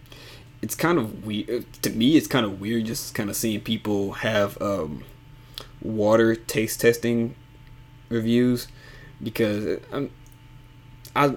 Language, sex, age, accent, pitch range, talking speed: English, male, 20-39, American, 110-130 Hz, 120 wpm